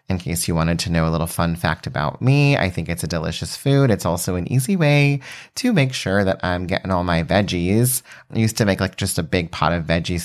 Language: English